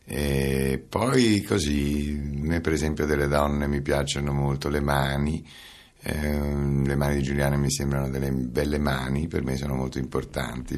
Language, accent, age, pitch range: Italian, native, 60-79, 65-75 Hz